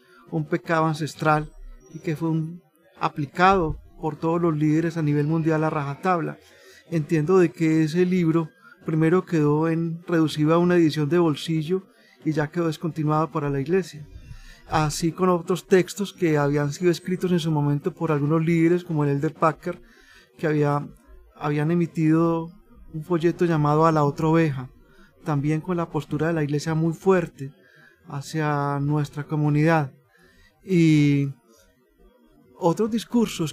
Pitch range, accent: 150-175 Hz, Colombian